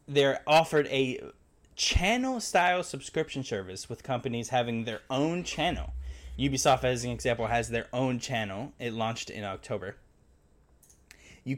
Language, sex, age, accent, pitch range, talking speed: English, male, 10-29, American, 105-145 Hz, 135 wpm